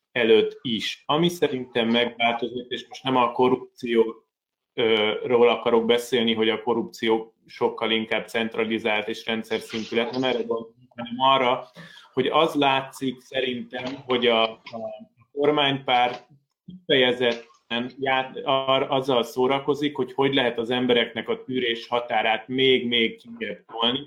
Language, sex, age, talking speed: Hungarian, male, 30-49, 115 wpm